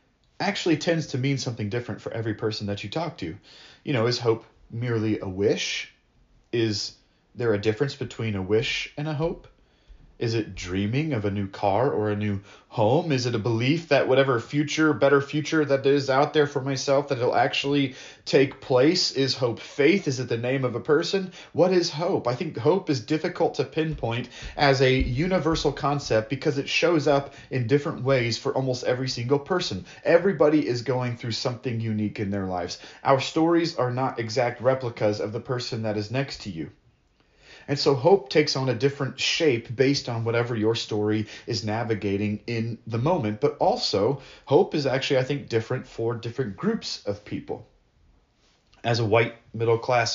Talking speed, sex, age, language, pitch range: 185 wpm, male, 30-49, English, 110-140 Hz